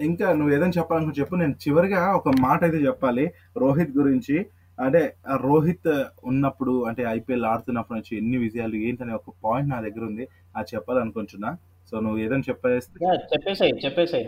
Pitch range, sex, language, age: 110-145 Hz, male, Telugu, 20-39